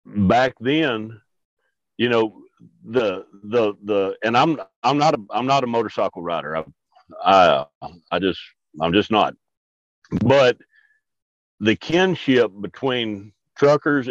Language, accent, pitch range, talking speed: English, American, 105-140 Hz, 125 wpm